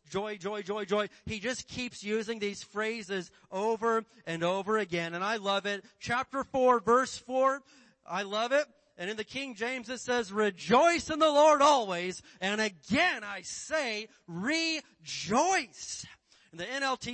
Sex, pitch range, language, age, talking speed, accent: male, 170-225 Hz, English, 30-49, 160 wpm, American